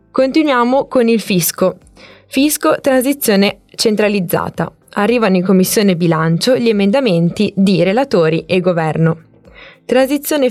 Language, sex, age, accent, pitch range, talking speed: Italian, female, 20-39, native, 175-220 Hz, 105 wpm